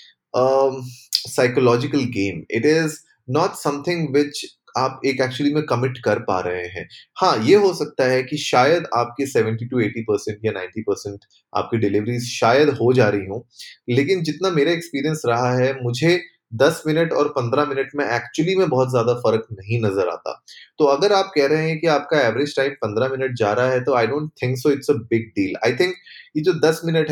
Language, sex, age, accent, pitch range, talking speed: Hindi, male, 20-39, native, 115-150 Hz, 195 wpm